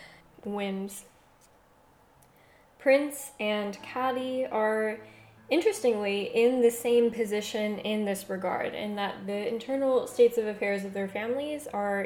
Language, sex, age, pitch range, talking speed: English, female, 10-29, 200-235 Hz, 120 wpm